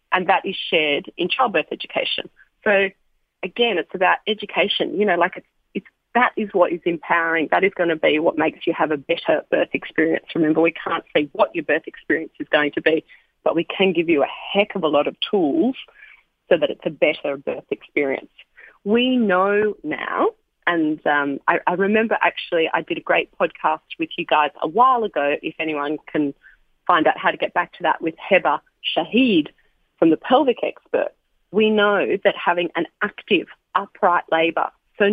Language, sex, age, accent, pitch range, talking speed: English, female, 30-49, Australian, 165-220 Hz, 195 wpm